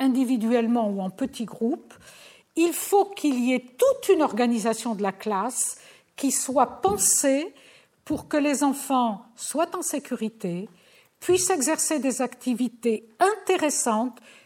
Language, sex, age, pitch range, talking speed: French, female, 50-69, 230-310 Hz, 130 wpm